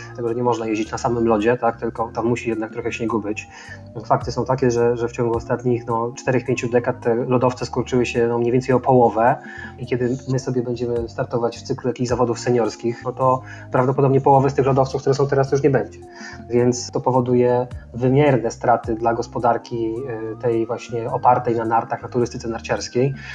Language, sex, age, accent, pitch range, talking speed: Polish, male, 20-39, native, 120-140 Hz, 195 wpm